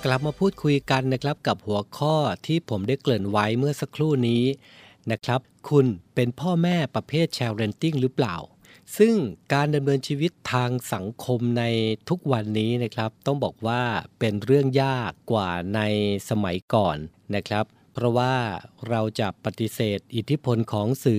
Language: Thai